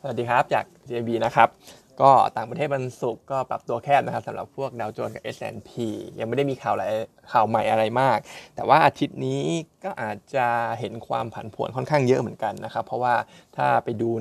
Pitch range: 115-145 Hz